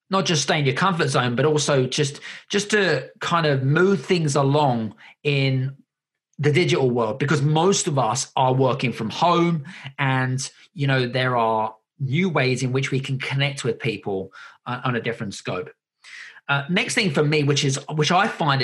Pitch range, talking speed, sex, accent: 130-160 Hz, 185 wpm, male, British